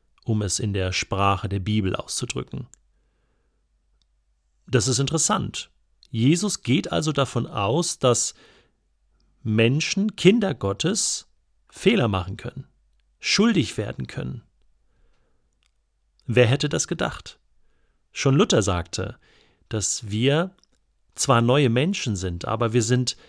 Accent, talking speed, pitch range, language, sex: German, 110 wpm, 95-130 Hz, German, male